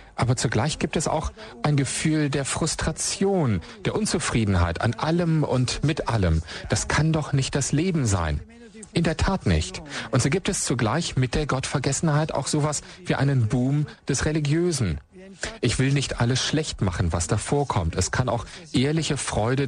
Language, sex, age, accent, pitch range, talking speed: German, male, 40-59, German, 110-155 Hz, 170 wpm